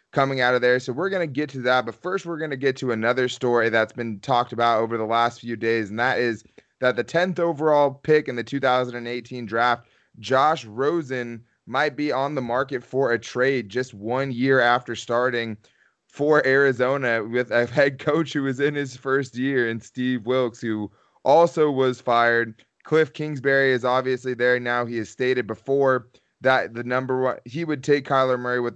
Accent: American